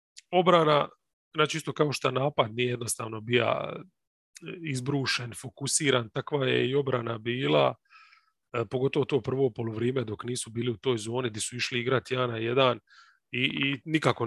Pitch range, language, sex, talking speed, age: 120-145 Hz, English, male, 145 wpm, 30-49